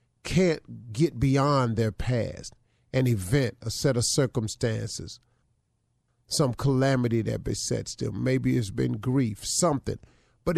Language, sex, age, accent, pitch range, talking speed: English, male, 40-59, American, 120-165 Hz, 125 wpm